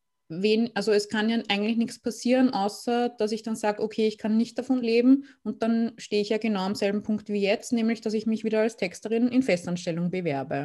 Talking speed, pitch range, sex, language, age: 225 wpm, 185-235 Hz, female, German, 20-39